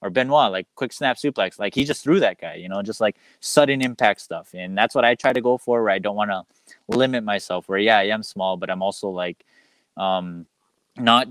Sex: male